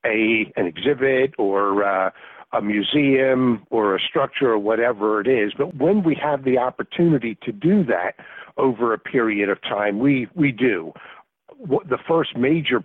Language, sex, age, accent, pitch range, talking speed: English, male, 60-79, American, 110-140 Hz, 165 wpm